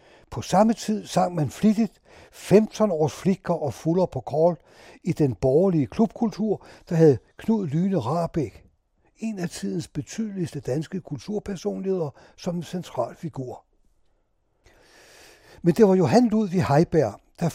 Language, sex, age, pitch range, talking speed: Danish, male, 60-79, 145-190 Hz, 140 wpm